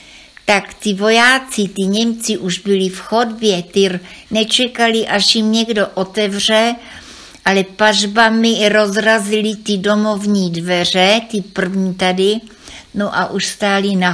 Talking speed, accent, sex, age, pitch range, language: 125 wpm, native, female, 60-79, 190-220 Hz, Czech